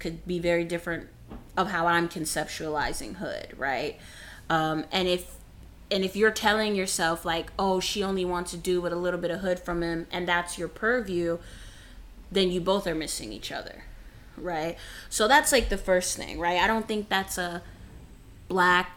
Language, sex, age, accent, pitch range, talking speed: English, female, 20-39, American, 170-200 Hz, 185 wpm